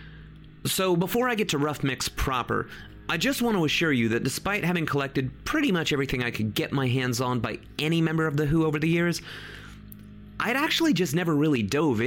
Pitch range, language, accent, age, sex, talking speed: 120-170 Hz, English, American, 30-49, male, 210 wpm